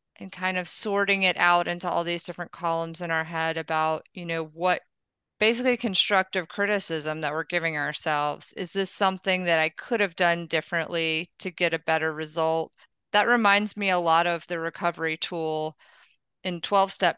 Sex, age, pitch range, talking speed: female, 30-49, 160-185 Hz, 175 wpm